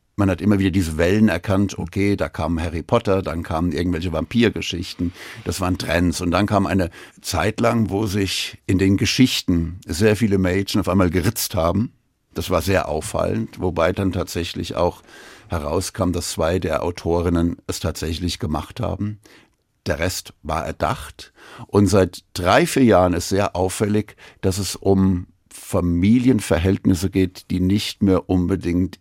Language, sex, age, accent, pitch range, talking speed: German, male, 60-79, German, 90-105 Hz, 155 wpm